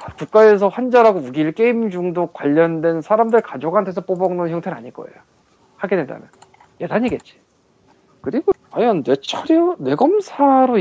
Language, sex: Korean, male